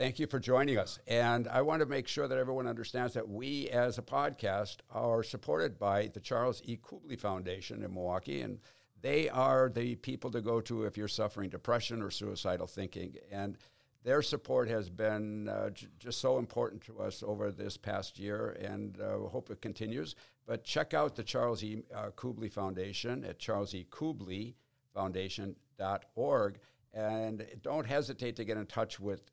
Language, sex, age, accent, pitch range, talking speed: English, male, 60-79, American, 95-120 Hz, 175 wpm